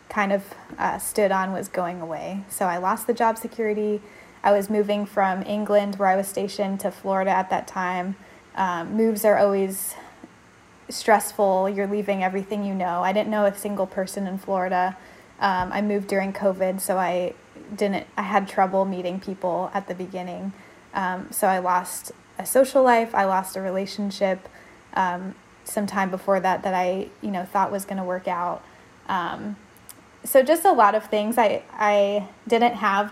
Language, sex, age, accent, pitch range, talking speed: English, female, 10-29, American, 185-210 Hz, 180 wpm